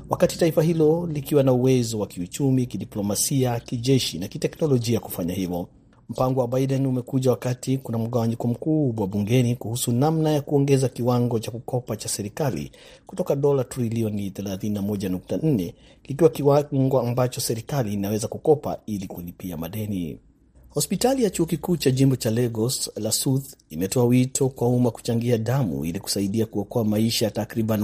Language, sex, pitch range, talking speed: Swahili, male, 105-130 Hz, 140 wpm